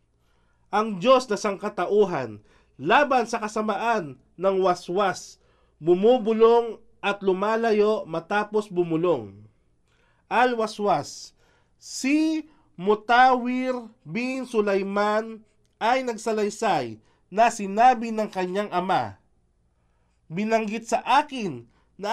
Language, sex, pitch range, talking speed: Filipino, male, 185-240 Hz, 80 wpm